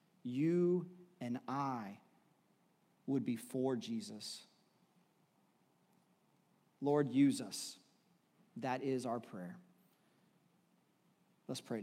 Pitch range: 135-170 Hz